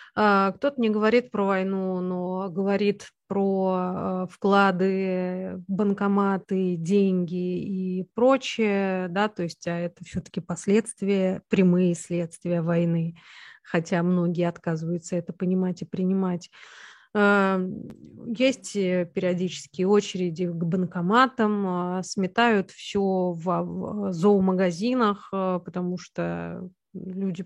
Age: 30-49